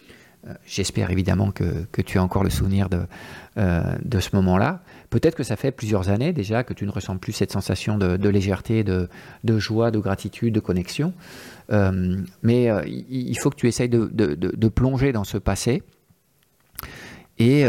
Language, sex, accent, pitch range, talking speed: French, male, French, 100-125 Hz, 185 wpm